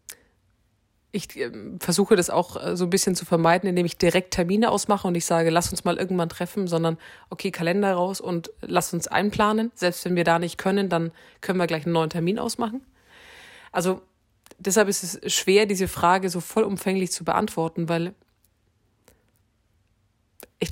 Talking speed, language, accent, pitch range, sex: 165 wpm, German, German, 160-190 Hz, female